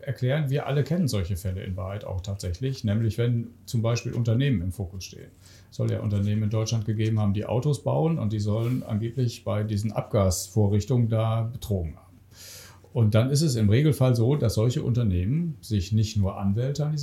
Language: German